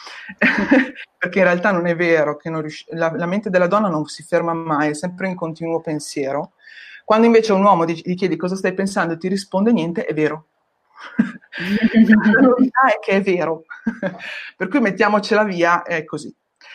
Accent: native